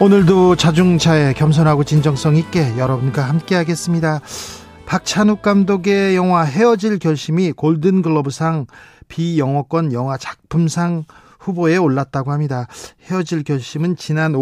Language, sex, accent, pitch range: Korean, male, native, 150-190 Hz